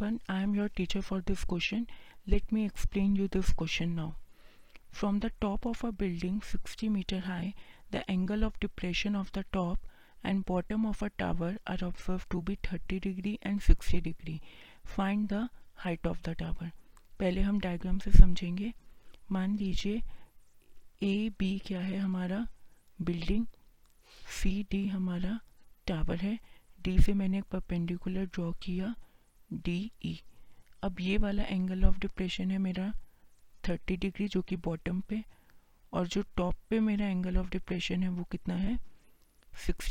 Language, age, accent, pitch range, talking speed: Hindi, 30-49, native, 180-205 Hz, 160 wpm